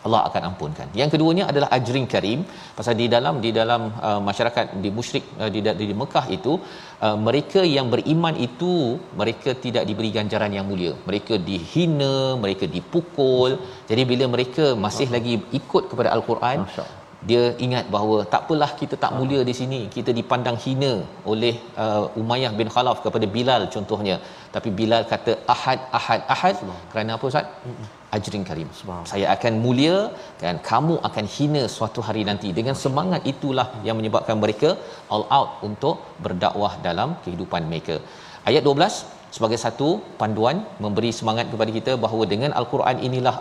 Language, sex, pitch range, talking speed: Malayalam, male, 110-135 Hz, 155 wpm